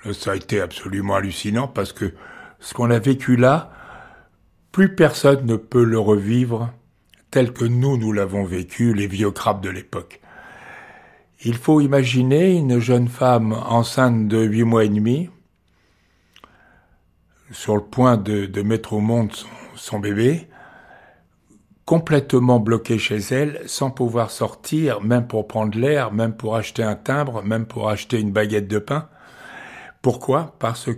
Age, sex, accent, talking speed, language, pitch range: 60-79, male, French, 150 wpm, French, 105-125 Hz